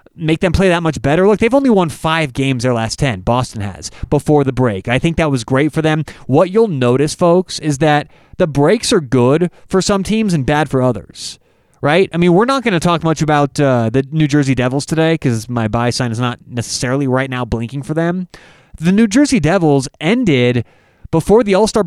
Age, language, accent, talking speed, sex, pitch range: 30-49, English, American, 220 wpm, male, 140-190 Hz